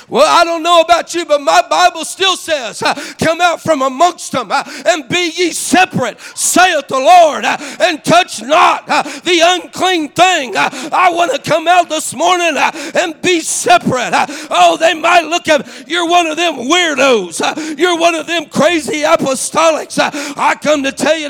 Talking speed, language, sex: 170 wpm, English, male